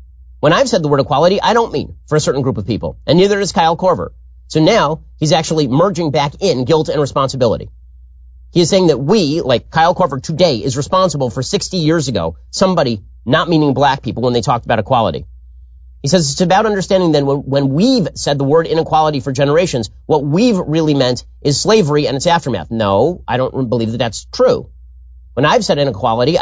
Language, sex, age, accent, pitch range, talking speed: English, male, 30-49, American, 105-165 Hz, 200 wpm